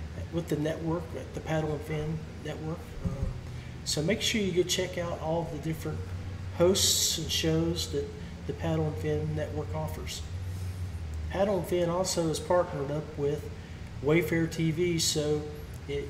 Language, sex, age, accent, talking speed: English, male, 40-59, American, 155 wpm